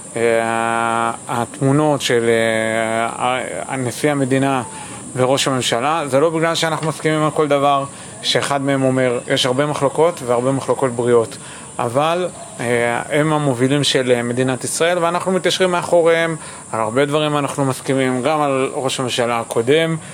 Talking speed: 125 wpm